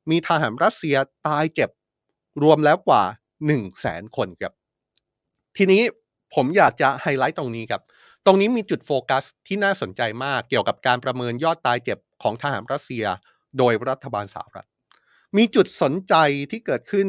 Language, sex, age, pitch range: Thai, male, 30-49, 125-190 Hz